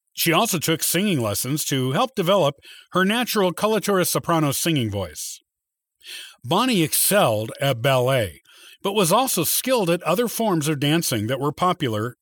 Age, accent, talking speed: 50-69, American, 145 wpm